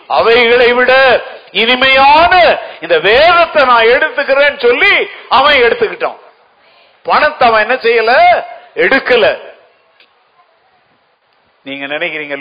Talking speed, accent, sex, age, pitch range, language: 80 wpm, native, male, 50-69, 195-325 Hz, Tamil